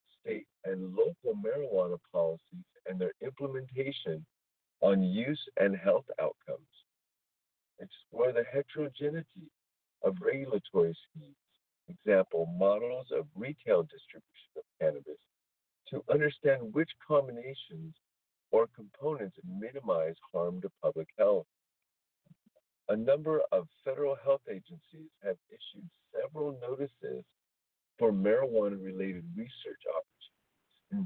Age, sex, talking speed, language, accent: 50-69, male, 100 wpm, English, American